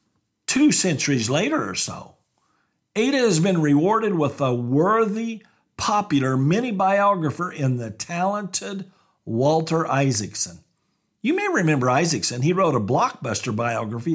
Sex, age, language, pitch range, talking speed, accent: male, 50-69, English, 125-180 Hz, 120 wpm, American